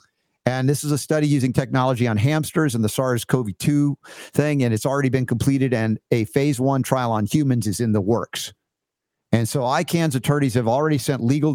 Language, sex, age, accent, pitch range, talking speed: English, male, 50-69, American, 120-150 Hz, 190 wpm